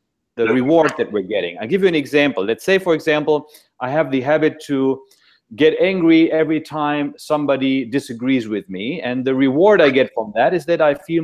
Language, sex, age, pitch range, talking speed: English, male, 40-59, 135-170 Hz, 205 wpm